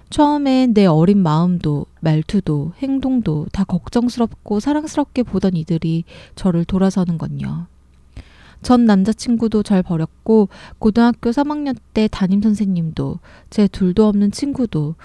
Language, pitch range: Korean, 175-240 Hz